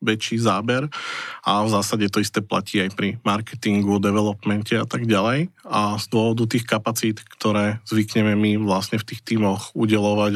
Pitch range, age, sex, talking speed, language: 105-120 Hz, 20-39, male, 160 wpm, Slovak